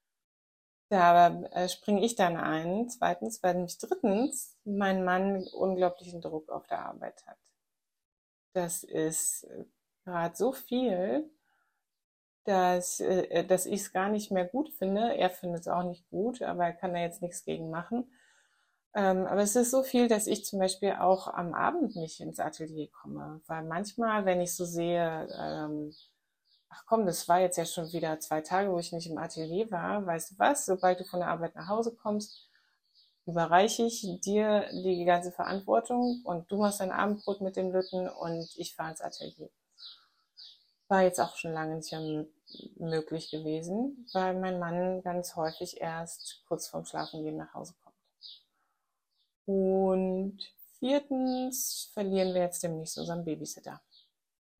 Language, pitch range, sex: German, 170-205 Hz, female